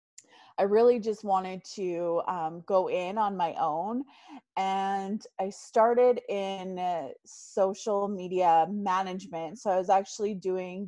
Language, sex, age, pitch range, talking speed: English, female, 20-39, 175-205 Hz, 130 wpm